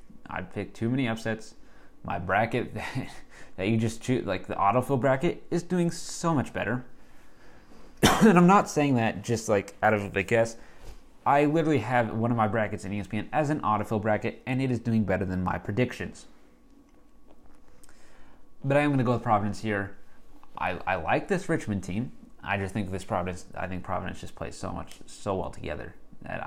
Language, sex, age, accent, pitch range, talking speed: English, male, 20-39, American, 100-130 Hz, 195 wpm